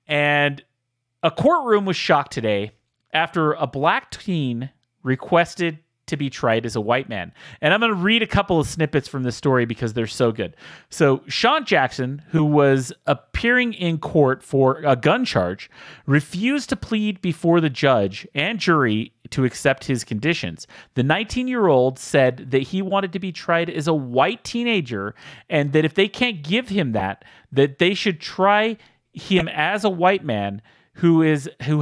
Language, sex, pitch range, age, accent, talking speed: English, male, 125-185 Hz, 30-49, American, 170 wpm